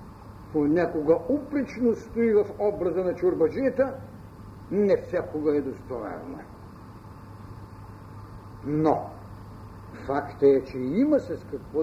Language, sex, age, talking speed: Bulgarian, male, 60-79, 90 wpm